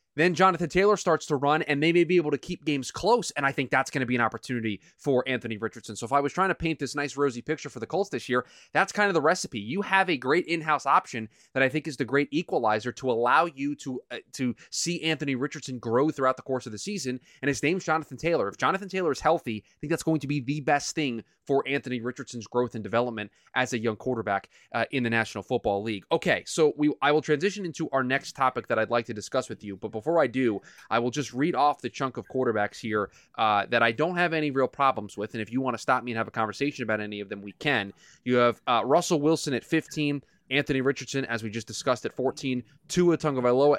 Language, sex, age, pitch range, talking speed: English, male, 20-39, 115-155 Hz, 255 wpm